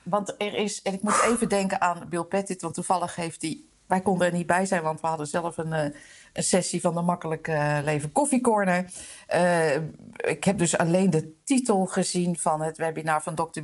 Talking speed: 205 wpm